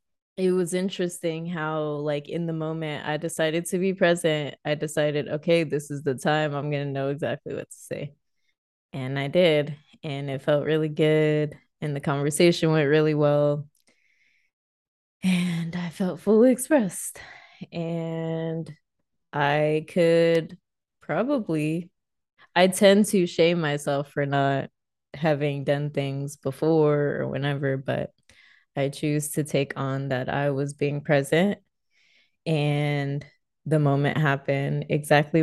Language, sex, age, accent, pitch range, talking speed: English, female, 20-39, American, 145-170 Hz, 135 wpm